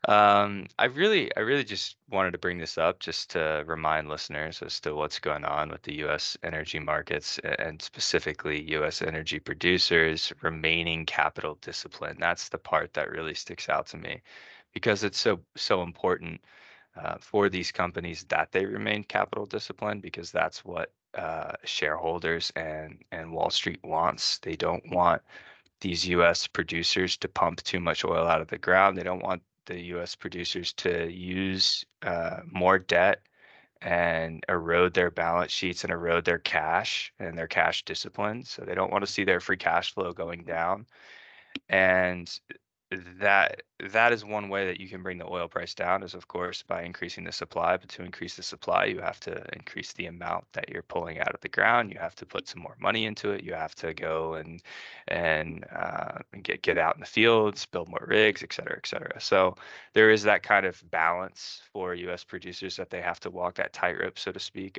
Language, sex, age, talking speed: English, male, 20-39, 190 wpm